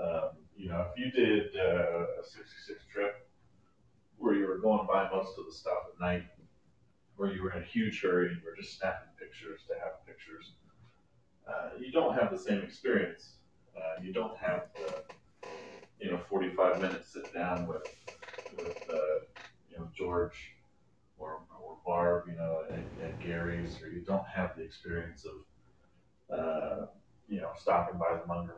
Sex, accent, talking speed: male, American, 175 wpm